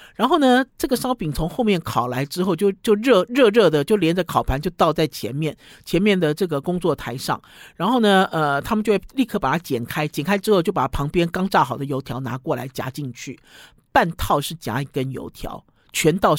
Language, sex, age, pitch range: Chinese, male, 50-69, 140-205 Hz